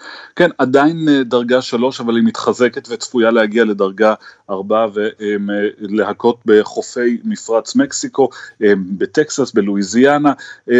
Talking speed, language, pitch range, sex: 95 wpm, Hebrew, 105-130 Hz, male